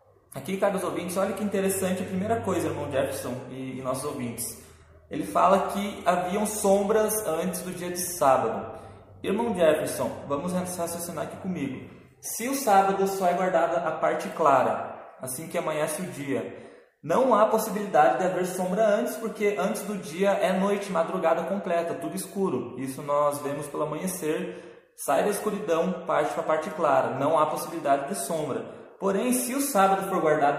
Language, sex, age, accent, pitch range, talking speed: Portuguese, male, 20-39, Brazilian, 145-200 Hz, 170 wpm